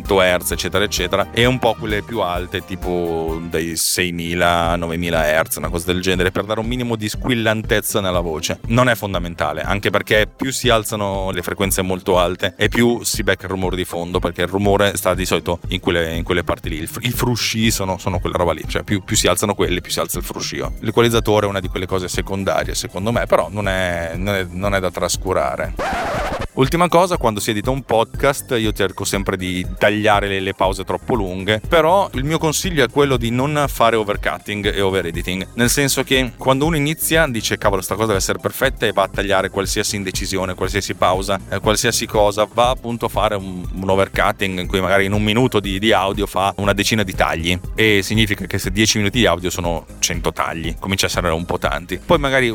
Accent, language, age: native, Italian, 30-49